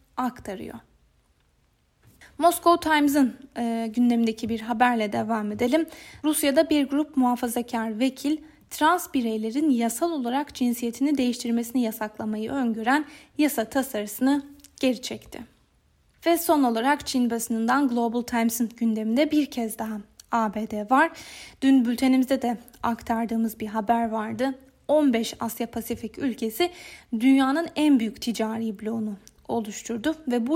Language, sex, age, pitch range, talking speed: Turkish, female, 10-29, 230-285 Hz, 115 wpm